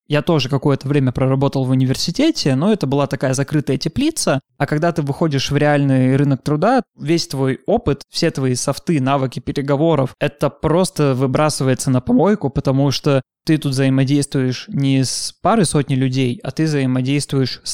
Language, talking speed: Russian, 160 wpm